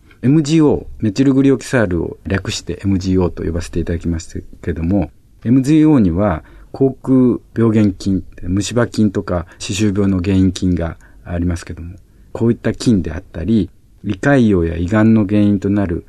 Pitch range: 90-115 Hz